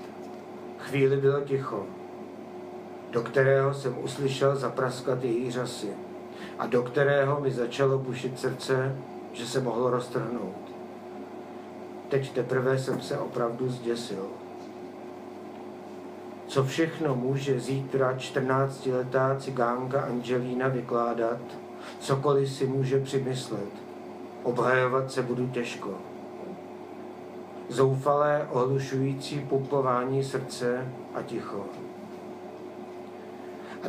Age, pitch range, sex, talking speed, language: 50-69, 125-135 Hz, male, 90 wpm, Czech